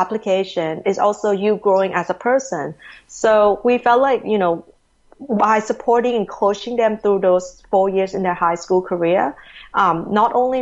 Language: English